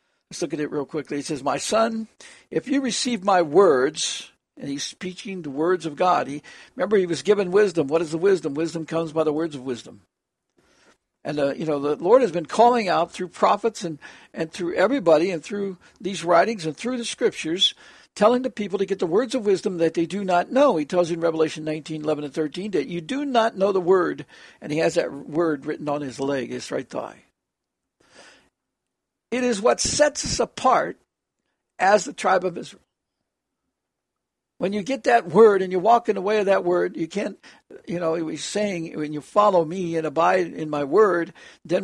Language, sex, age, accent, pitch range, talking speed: English, male, 60-79, American, 160-210 Hz, 210 wpm